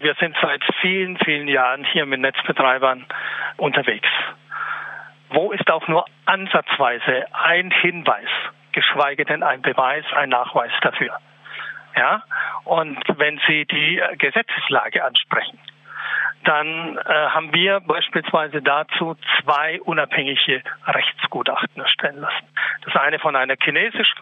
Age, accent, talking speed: 50-69, German, 115 wpm